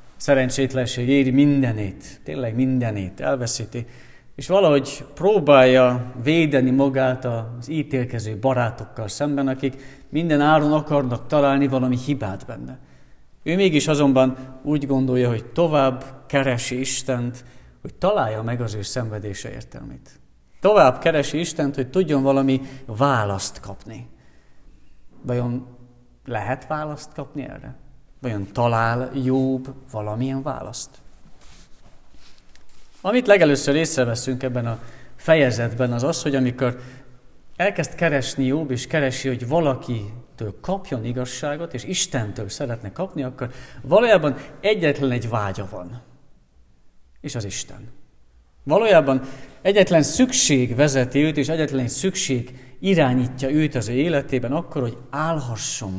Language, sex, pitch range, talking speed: Hungarian, male, 120-145 Hz, 110 wpm